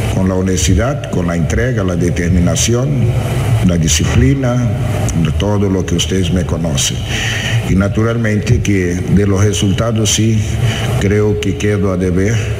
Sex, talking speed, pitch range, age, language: male, 135 wpm, 90-115 Hz, 60-79, Spanish